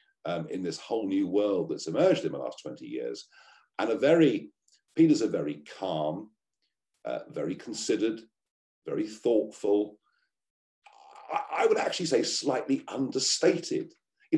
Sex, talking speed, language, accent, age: male, 140 wpm, English, British, 50-69